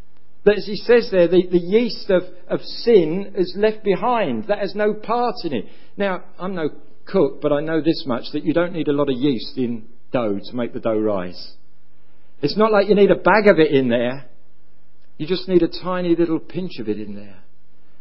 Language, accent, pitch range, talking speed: English, British, 145-200 Hz, 220 wpm